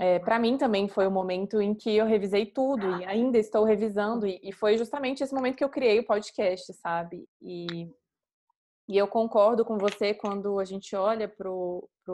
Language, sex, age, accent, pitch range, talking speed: Portuguese, female, 20-39, Brazilian, 190-225 Hz, 200 wpm